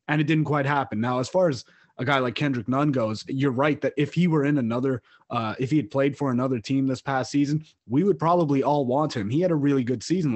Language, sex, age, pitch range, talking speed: English, male, 20-39, 130-150 Hz, 265 wpm